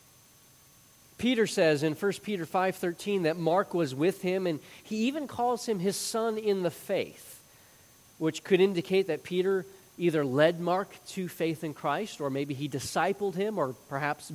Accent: American